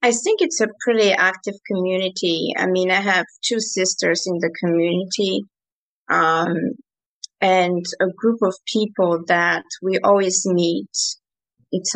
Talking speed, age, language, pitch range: 135 wpm, 30-49, English, 165-185 Hz